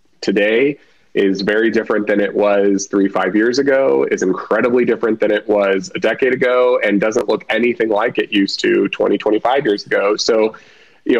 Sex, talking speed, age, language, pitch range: male, 180 wpm, 30-49, English, 100-110 Hz